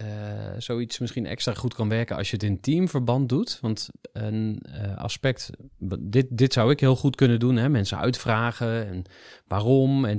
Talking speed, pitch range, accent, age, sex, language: 185 wpm, 100-125 Hz, Dutch, 30-49, male, Dutch